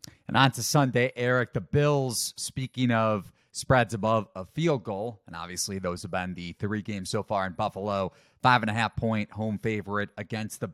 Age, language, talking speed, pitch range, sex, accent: 30-49, English, 195 wpm, 100-125 Hz, male, American